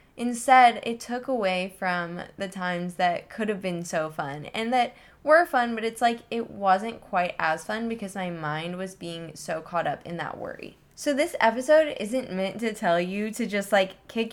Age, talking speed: 10-29, 200 wpm